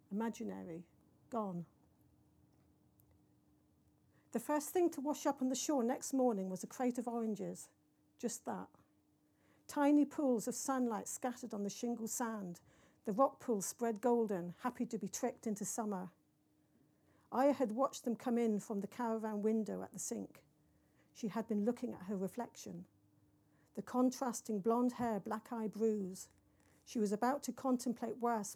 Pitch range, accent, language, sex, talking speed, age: 205-245 Hz, British, English, female, 155 wpm, 50-69